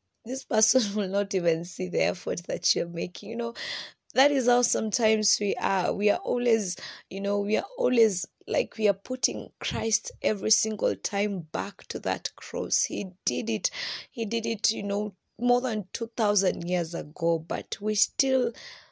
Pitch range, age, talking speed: 180-230 Hz, 20-39, 175 wpm